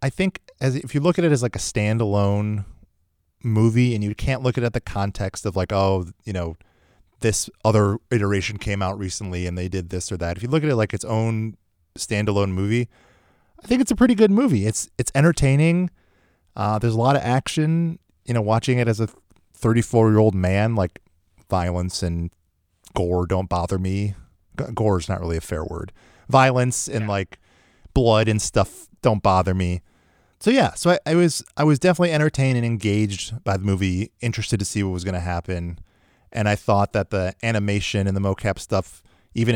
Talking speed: 200 wpm